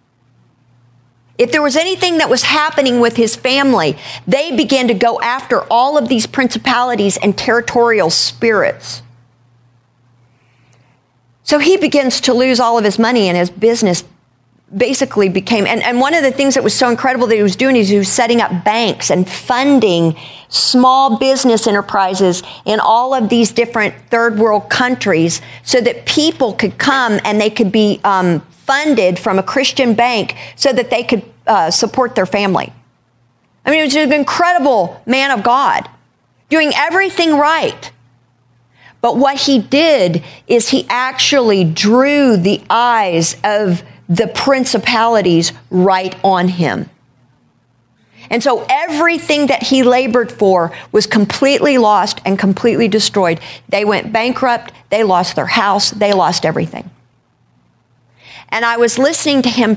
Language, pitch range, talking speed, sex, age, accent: English, 180-255 Hz, 150 wpm, female, 50-69, American